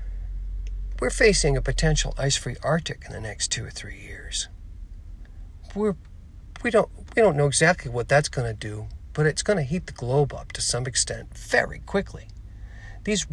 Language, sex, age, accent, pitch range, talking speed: English, male, 50-69, American, 85-120 Hz, 165 wpm